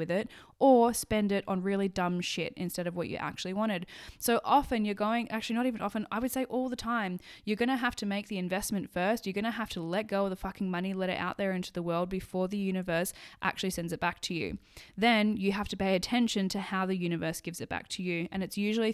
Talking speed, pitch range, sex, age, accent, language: 265 wpm, 180-220 Hz, female, 10-29, Australian, English